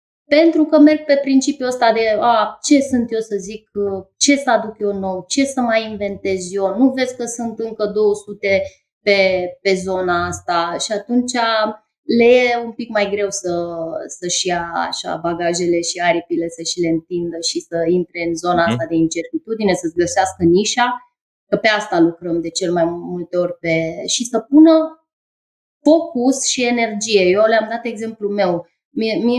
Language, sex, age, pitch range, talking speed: Romanian, female, 20-39, 185-245 Hz, 160 wpm